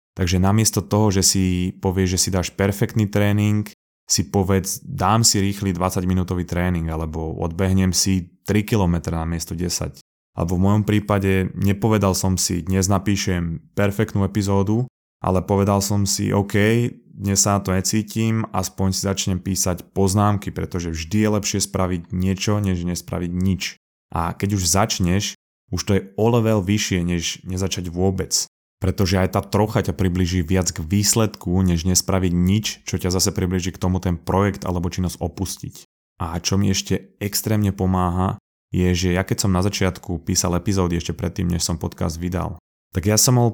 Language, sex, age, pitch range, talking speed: Slovak, male, 20-39, 90-100 Hz, 170 wpm